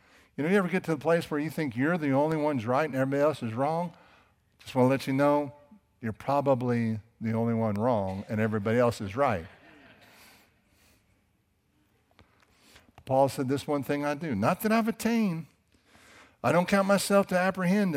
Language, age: English, 60-79